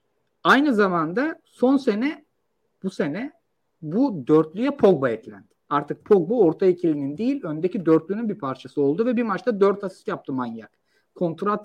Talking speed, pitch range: 145 wpm, 170-245 Hz